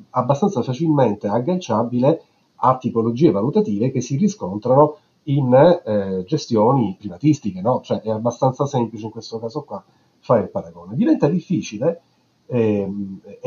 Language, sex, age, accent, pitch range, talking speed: Italian, male, 40-59, native, 110-155 Hz, 125 wpm